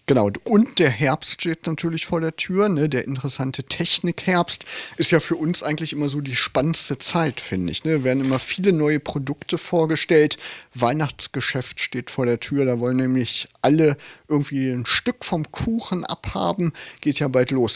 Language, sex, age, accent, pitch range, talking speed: German, male, 40-59, German, 120-160 Hz, 175 wpm